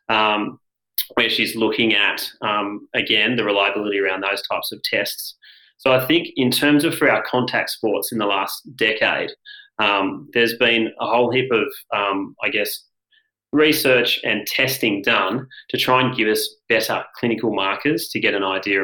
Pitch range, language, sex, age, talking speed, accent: 100-130 Hz, English, male, 30-49, 170 wpm, Australian